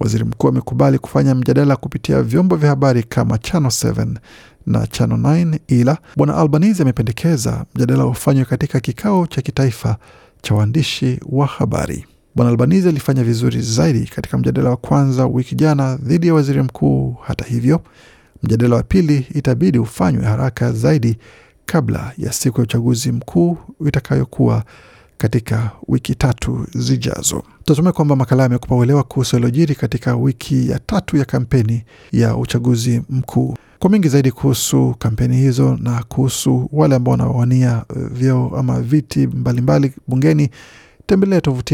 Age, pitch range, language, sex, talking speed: 50-69, 120-145 Hz, Swahili, male, 140 wpm